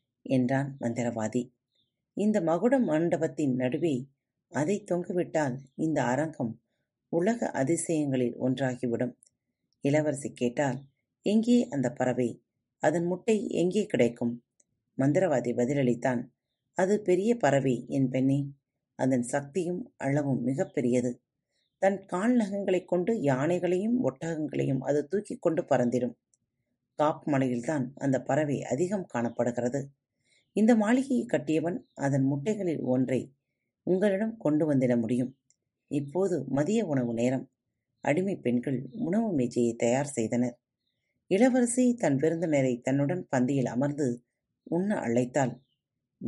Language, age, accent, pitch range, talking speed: Tamil, 30-49, native, 125-170 Hz, 100 wpm